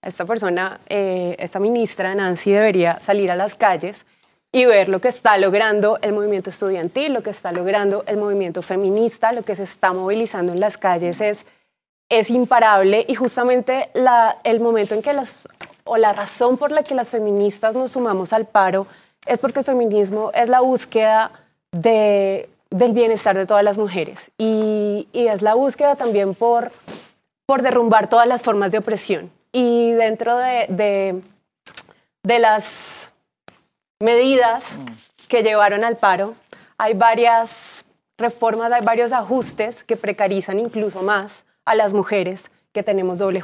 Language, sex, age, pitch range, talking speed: Spanish, female, 20-39, 200-235 Hz, 155 wpm